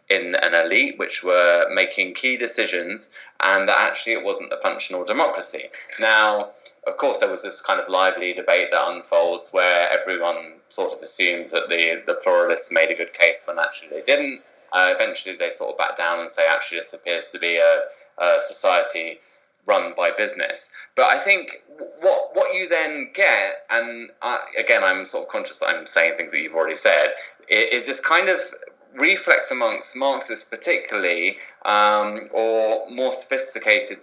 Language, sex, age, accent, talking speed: English, male, 20-39, British, 175 wpm